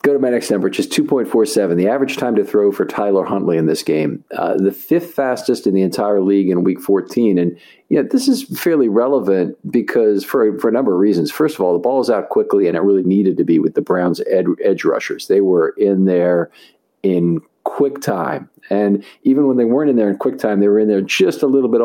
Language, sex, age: English, male, 50-69